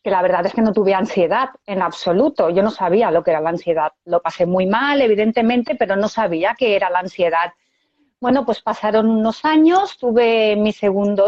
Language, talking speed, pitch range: Spanish, 200 wpm, 210-275 Hz